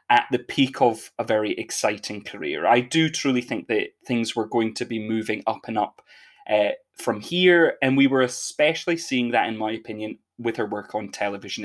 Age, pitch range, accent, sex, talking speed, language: 20-39, 120-160 Hz, British, male, 200 wpm, English